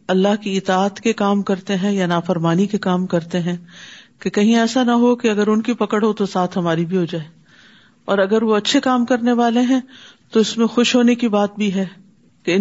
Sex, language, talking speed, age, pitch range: female, Urdu, 230 wpm, 50-69, 190-240 Hz